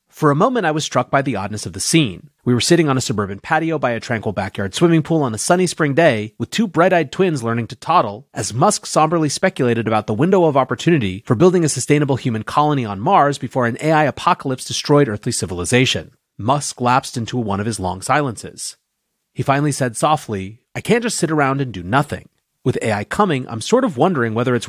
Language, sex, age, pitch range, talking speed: English, male, 30-49, 115-155 Hz, 220 wpm